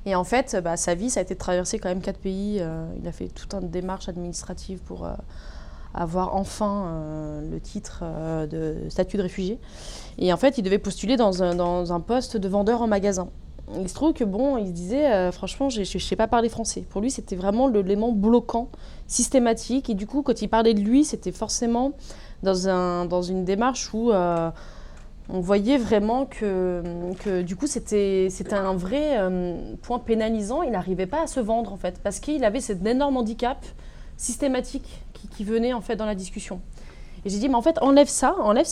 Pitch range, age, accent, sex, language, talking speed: 185-240 Hz, 20-39, French, female, French, 210 wpm